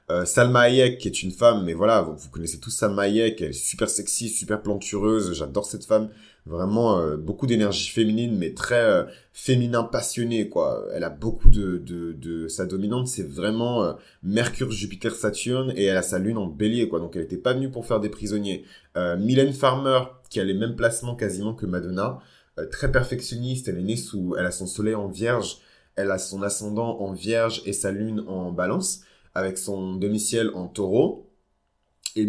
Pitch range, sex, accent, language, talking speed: 95-130 Hz, male, French, French, 195 wpm